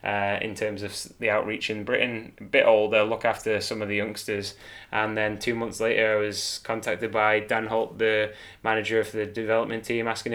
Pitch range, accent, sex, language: 110-125 Hz, British, male, English